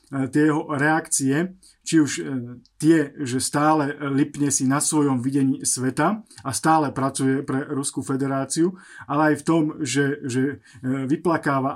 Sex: male